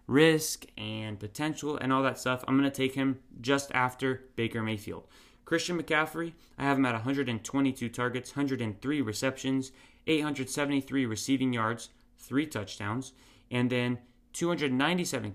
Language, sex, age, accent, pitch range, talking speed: English, male, 30-49, American, 120-145 Hz, 135 wpm